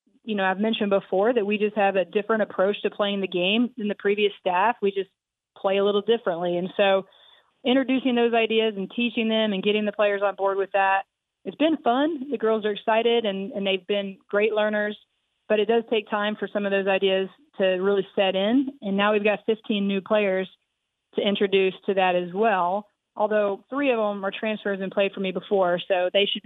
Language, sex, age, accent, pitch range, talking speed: English, female, 30-49, American, 190-215 Hz, 220 wpm